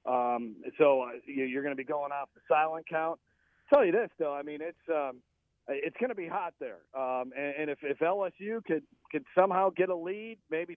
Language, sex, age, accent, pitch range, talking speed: English, male, 40-59, American, 140-170 Hz, 215 wpm